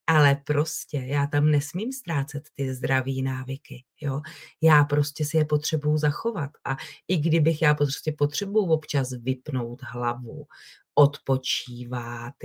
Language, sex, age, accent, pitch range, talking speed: Czech, female, 30-49, native, 145-180 Hz, 125 wpm